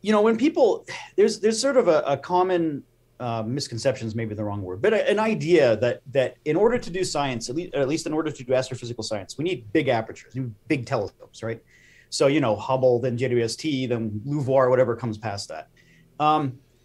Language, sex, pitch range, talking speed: English, male, 125-170 Hz, 210 wpm